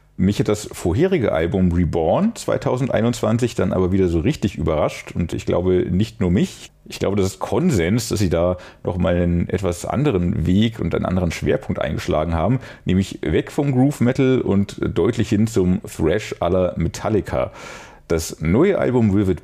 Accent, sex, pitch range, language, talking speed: German, male, 90-120 Hz, German, 165 wpm